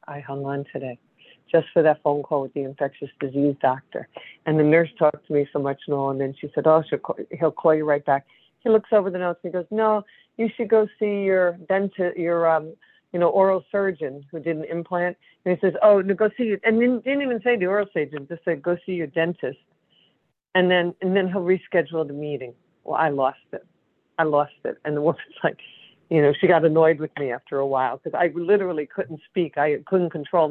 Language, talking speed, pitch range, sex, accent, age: English, 235 wpm, 150-190 Hz, female, American, 50-69